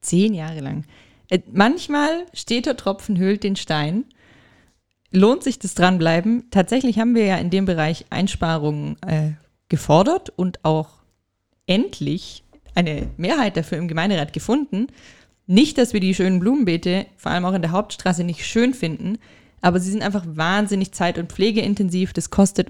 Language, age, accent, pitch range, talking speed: German, 20-39, German, 160-205 Hz, 155 wpm